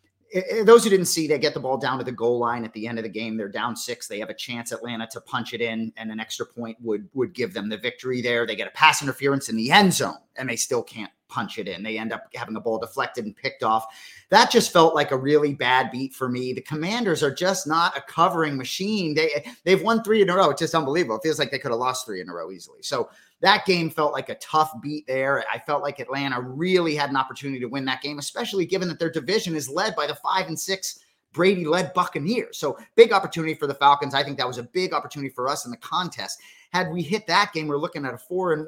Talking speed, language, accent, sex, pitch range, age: 270 wpm, English, American, male, 130-180 Hz, 30-49